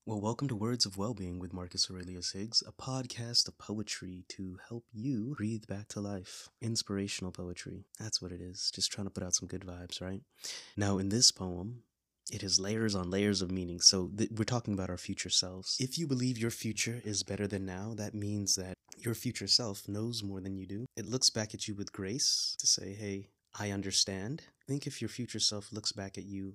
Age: 30-49